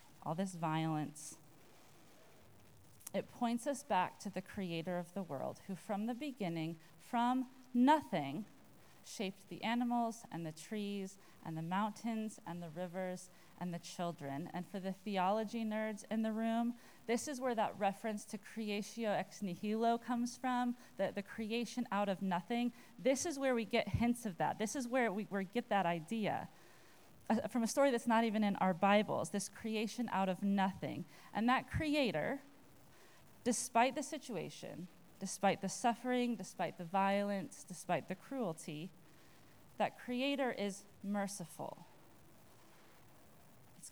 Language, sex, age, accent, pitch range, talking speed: English, female, 30-49, American, 175-235 Hz, 150 wpm